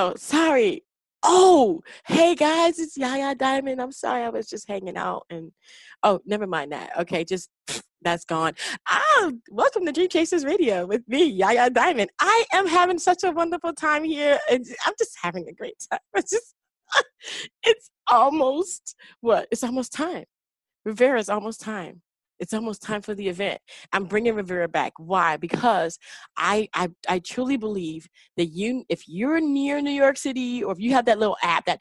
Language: English